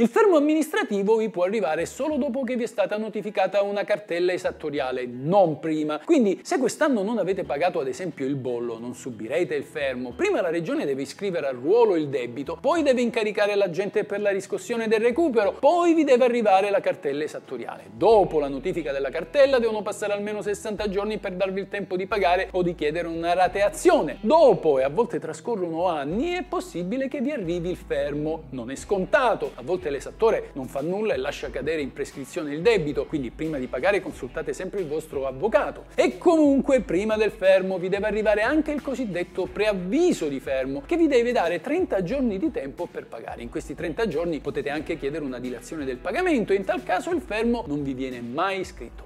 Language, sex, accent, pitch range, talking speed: Italian, male, native, 165-265 Hz, 195 wpm